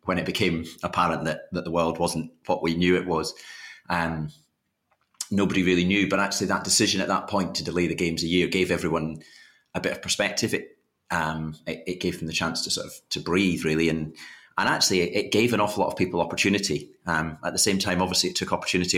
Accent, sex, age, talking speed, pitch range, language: British, male, 30-49, 230 wpm, 80-95 Hz, English